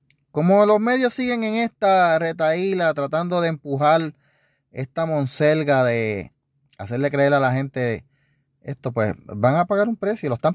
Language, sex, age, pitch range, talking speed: Spanish, male, 30-49, 130-170 Hz, 155 wpm